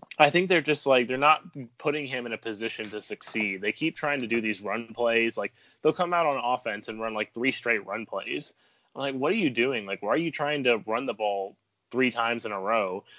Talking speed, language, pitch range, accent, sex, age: 245 wpm, English, 110-140 Hz, American, male, 20-39